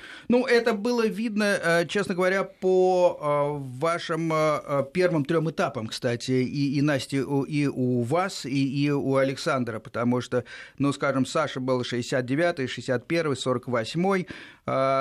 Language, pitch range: Russian, 130-170 Hz